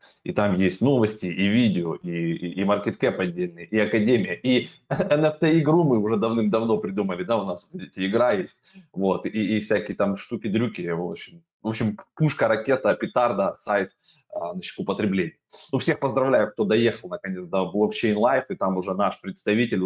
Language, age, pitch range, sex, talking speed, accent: Russian, 20-39, 95-145 Hz, male, 165 wpm, native